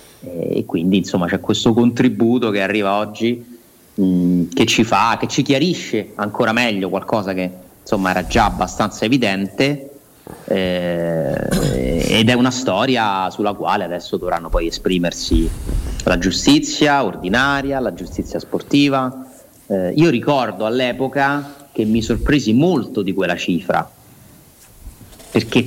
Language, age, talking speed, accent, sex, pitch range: Italian, 30-49, 125 wpm, native, male, 105-130 Hz